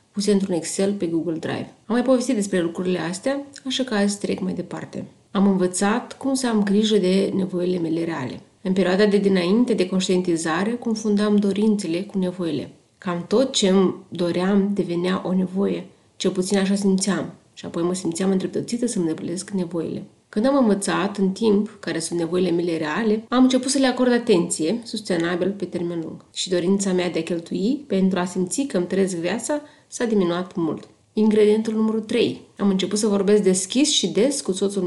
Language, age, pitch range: Romanian, 30-49, 180-215 Hz